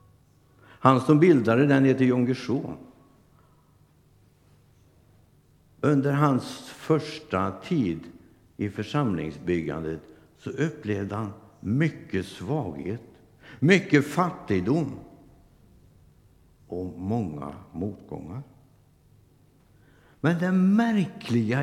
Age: 60-79